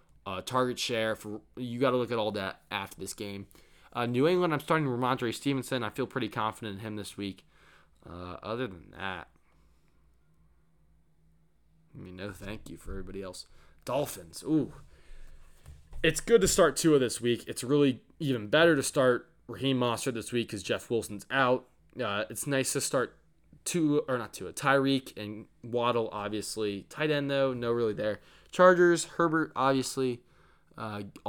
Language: English